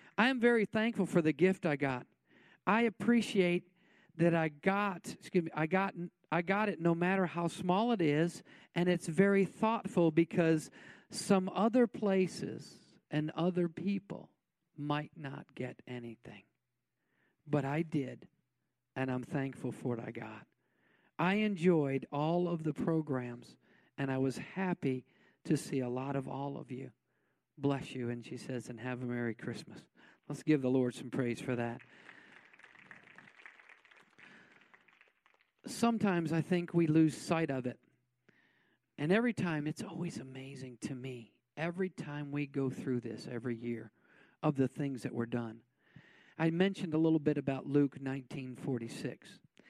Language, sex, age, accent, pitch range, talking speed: English, male, 50-69, American, 130-180 Hz, 150 wpm